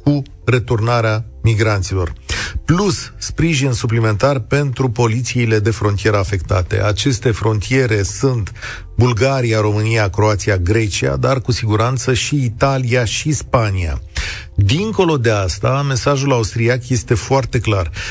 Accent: native